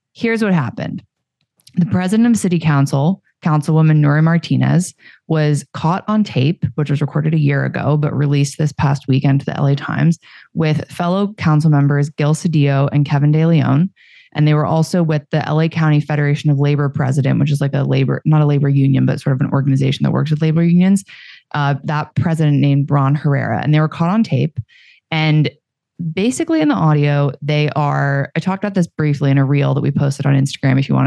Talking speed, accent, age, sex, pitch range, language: 205 wpm, American, 20-39, female, 140-165 Hz, English